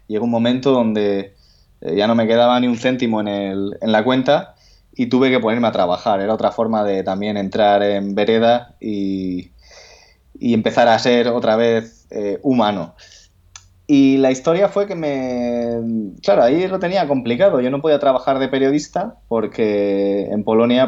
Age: 20-39